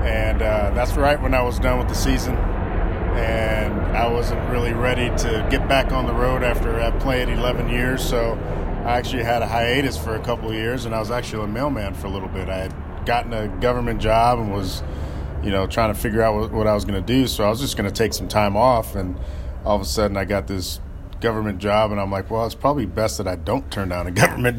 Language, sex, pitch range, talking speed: English, male, 100-120 Hz, 245 wpm